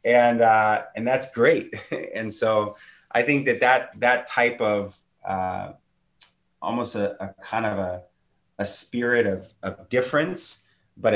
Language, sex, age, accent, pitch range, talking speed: English, male, 30-49, American, 90-110 Hz, 145 wpm